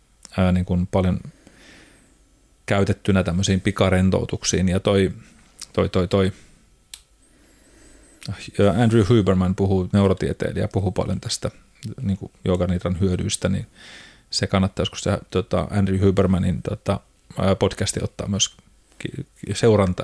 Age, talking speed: 30-49, 100 wpm